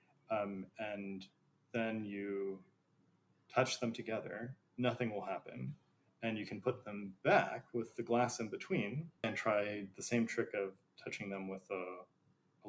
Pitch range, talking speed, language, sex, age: 105-125 Hz, 150 wpm, English, male, 30-49